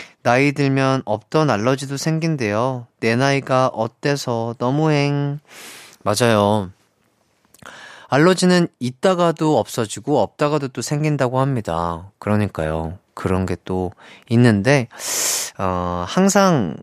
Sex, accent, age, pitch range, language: male, native, 30-49, 100-150 Hz, Korean